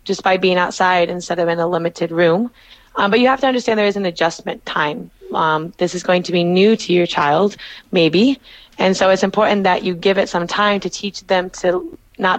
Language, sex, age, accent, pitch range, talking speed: English, female, 20-39, American, 170-205 Hz, 230 wpm